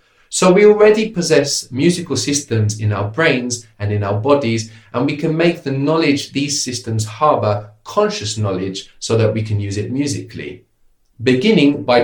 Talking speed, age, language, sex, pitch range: 165 wpm, 30-49, English, male, 105-145 Hz